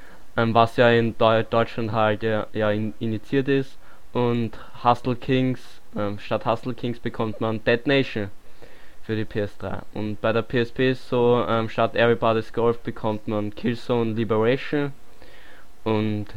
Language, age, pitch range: German, 20-39, 110-125 Hz